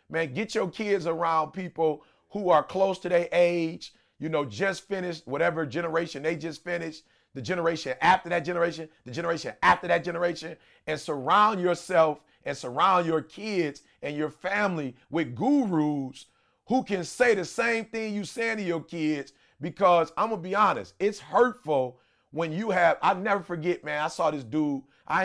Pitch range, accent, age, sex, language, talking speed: 145-190 Hz, American, 30-49, male, English, 175 wpm